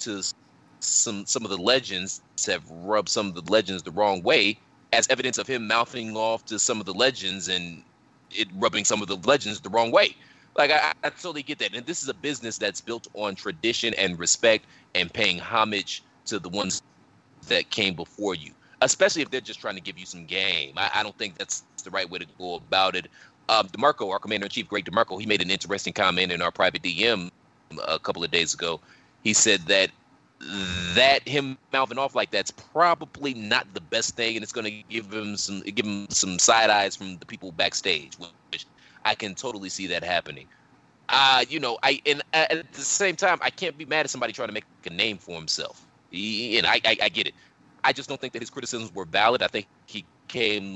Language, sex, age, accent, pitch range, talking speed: English, male, 30-49, American, 95-130 Hz, 220 wpm